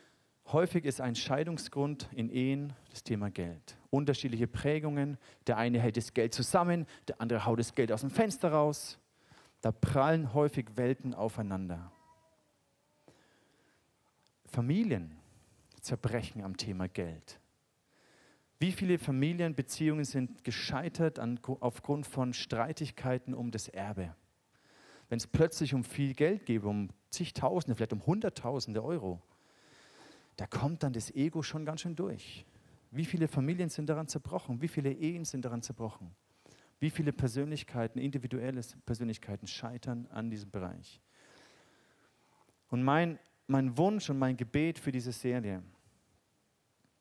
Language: German